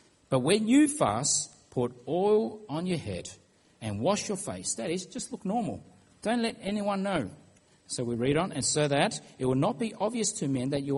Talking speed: 210 wpm